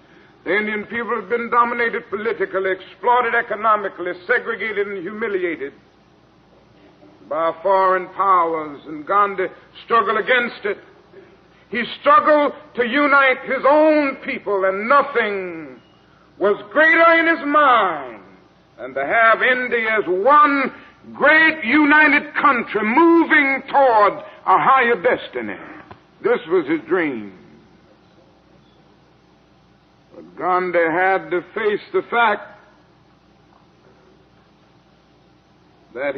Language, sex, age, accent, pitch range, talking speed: English, male, 60-79, American, 190-285 Hz, 100 wpm